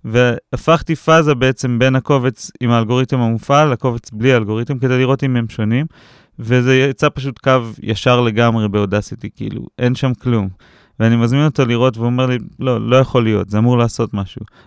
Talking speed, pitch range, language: 170 wpm, 120-150 Hz, Hebrew